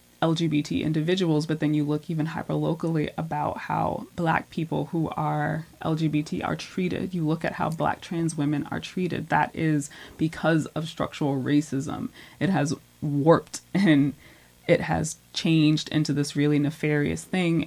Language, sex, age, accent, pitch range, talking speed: English, female, 20-39, American, 140-155 Hz, 155 wpm